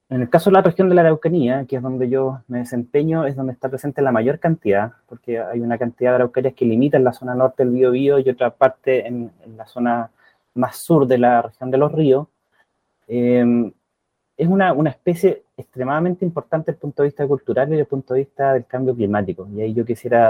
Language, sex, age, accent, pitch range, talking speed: Spanish, male, 30-49, Argentinian, 120-135 Hz, 225 wpm